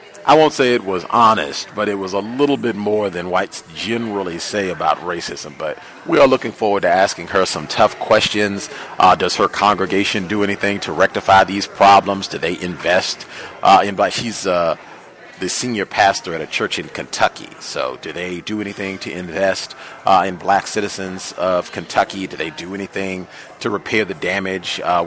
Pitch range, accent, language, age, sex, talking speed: 90-105 Hz, American, English, 40-59, male, 185 wpm